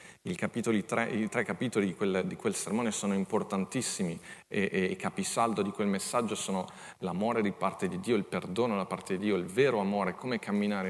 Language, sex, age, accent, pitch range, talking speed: Italian, male, 40-59, native, 100-125 Hz, 185 wpm